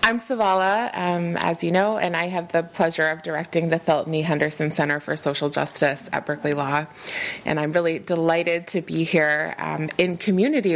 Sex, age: female, 20-39